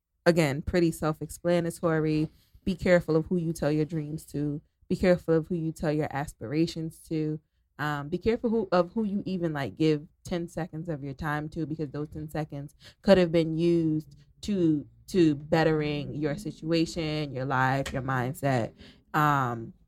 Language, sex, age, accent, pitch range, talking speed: English, female, 20-39, American, 150-175 Hz, 165 wpm